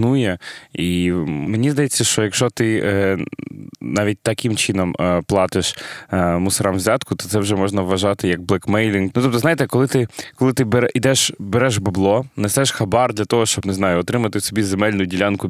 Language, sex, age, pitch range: Ukrainian, male, 20-39, 95-115 Hz